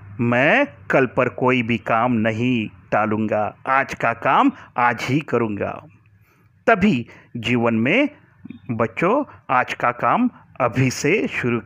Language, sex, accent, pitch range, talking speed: Marathi, male, native, 105-125 Hz, 125 wpm